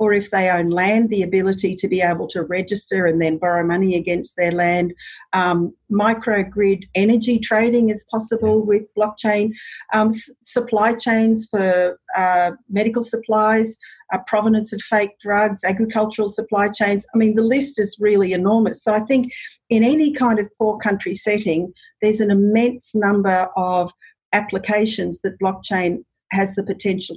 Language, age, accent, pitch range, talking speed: English, 40-59, Australian, 185-225 Hz, 155 wpm